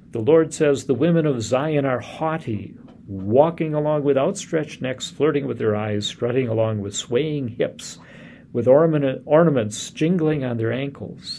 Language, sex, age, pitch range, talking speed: English, male, 50-69, 105-130 Hz, 155 wpm